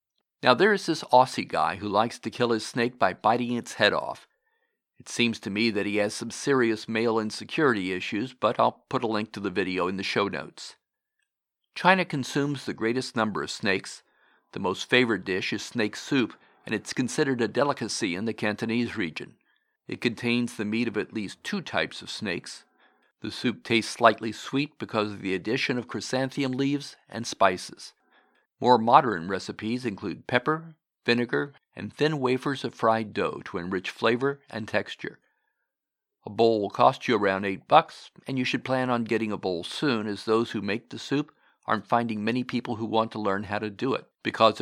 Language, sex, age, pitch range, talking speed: English, male, 50-69, 110-130 Hz, 190 wpm